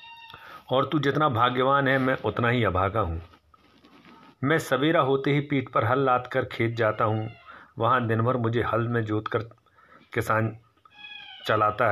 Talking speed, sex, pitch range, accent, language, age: 155 wpm, male, 105-135 Hz, native, Hindi, 50-69